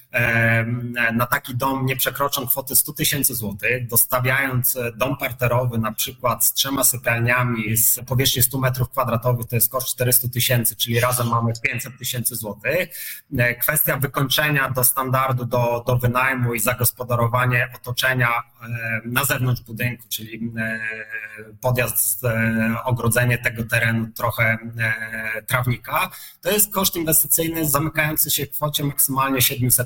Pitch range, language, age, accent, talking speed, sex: 115-135 Hz, Polish, 30-49, native, 125 wpm, male